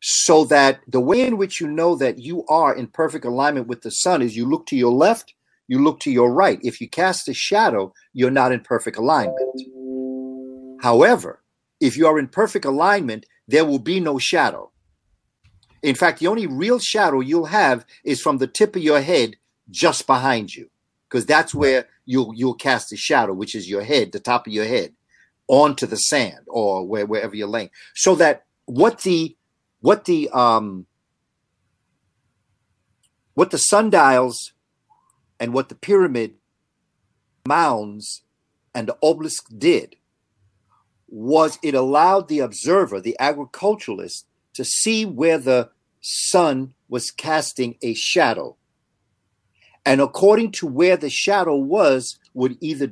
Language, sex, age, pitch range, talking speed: English, male, 50-69, 120-160 Hz, 155 wpm